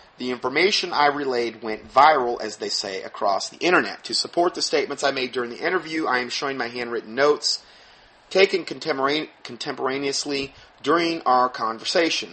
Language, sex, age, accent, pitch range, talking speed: English, male, 30-49, American, 115-150 Hz, 155 wpm